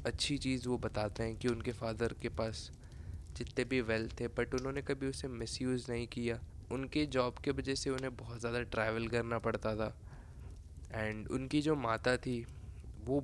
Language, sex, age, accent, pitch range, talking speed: Hindi, male, 20-39, native, 105-130 Hz, 175 wpm